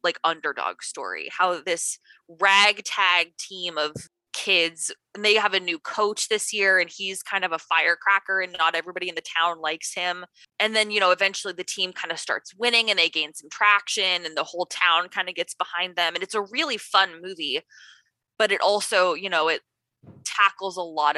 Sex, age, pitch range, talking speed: female, 20-39, 170-200 Hz, 200 wpm